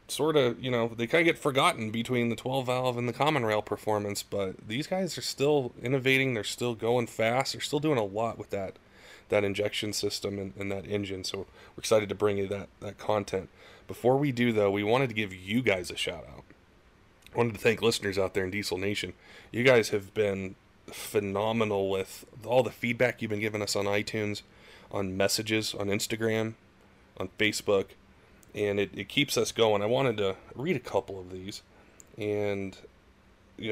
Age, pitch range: 30-49, 100-120 Hz